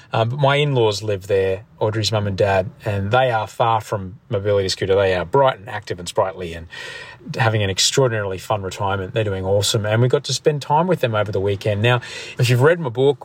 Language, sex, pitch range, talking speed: English, male, 110-130 Hz, 220 wpm